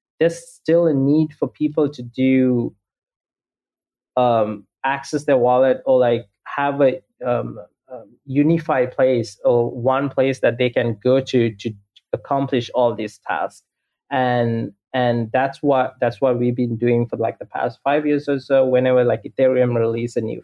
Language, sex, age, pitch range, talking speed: English, male, 20-39, 120-155 Hz, 165 wpm